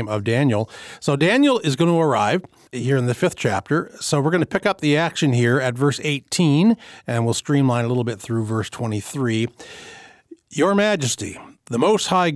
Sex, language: male, English